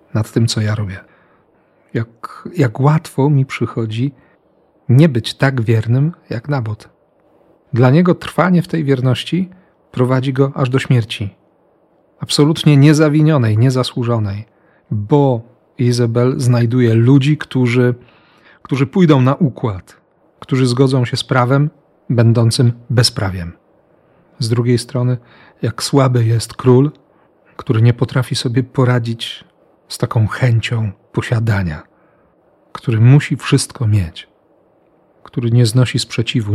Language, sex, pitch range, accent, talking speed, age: Polish, male, 115-135 Hz, native, 115 wpm, 40-59